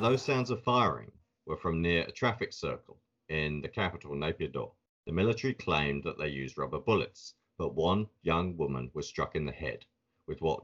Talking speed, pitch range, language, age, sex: 185 wpm, 75-105 Hz, English, 40-59, male